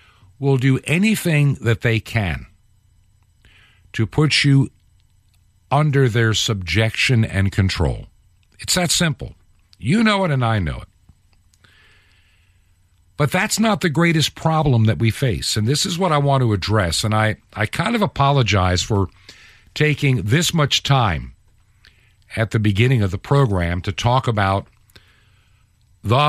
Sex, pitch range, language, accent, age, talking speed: male, 95-130 Hz, English, American, 50-69, 140 wpm